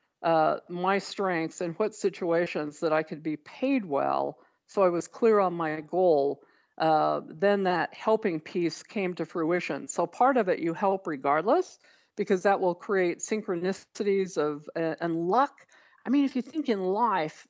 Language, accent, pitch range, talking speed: English, American, 175-225 Hz, 170 wpm